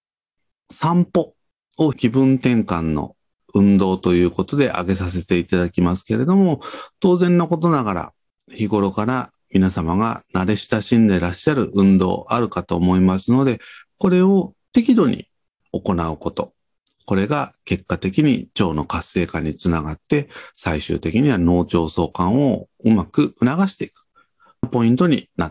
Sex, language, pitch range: male, Japanese, 90-140 Hz